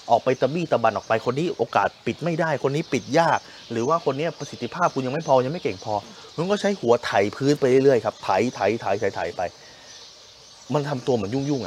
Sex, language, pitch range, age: male, Thai, 110-150 Hz, 20-39